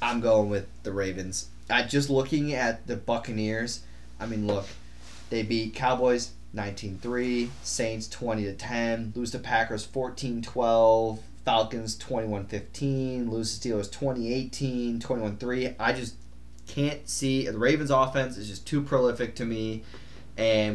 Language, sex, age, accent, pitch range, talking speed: English, male, 20-39, American, 100-125 Hz, 135 wpm